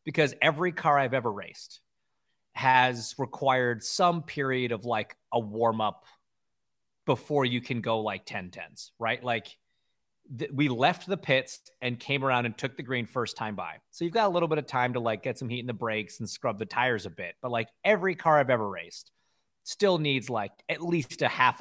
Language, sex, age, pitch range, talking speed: English, male, 30-49, 120-180 Hz, 210 wpm